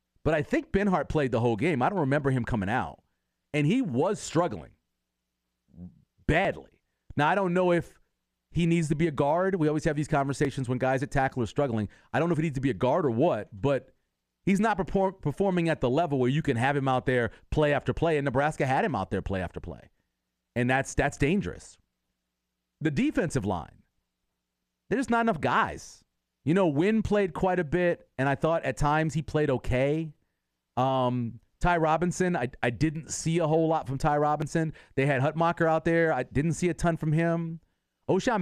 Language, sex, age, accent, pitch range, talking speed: English, male, 40-59, American, 120-165 Hz, 205 wpm